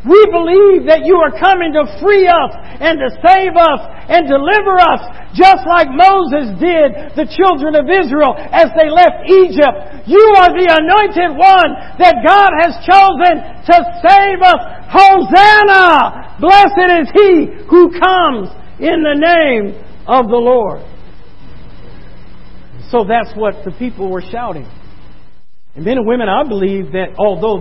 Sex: male